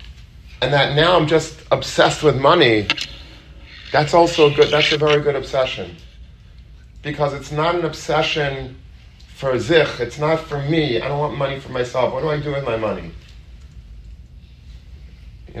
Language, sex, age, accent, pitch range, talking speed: English, male, 30-49, American, 95-145 Hz, 160 wpm